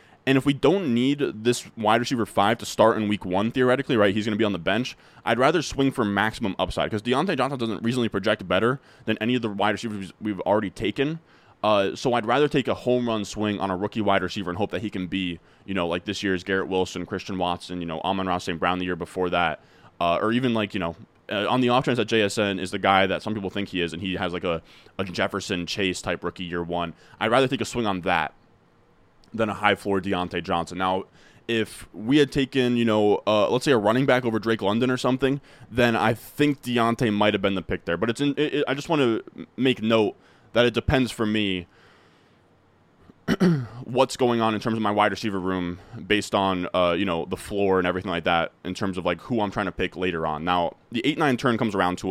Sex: male